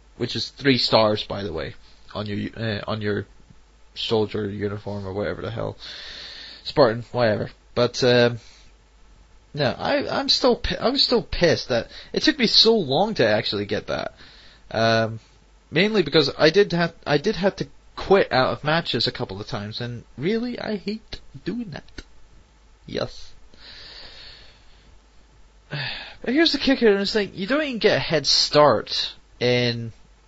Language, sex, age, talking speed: English, male, 20-39, 155 wpm